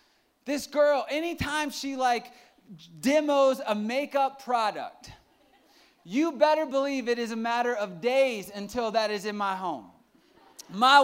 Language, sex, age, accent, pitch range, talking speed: English, male, 20-39, American, 200-270 Hz, 135 wpm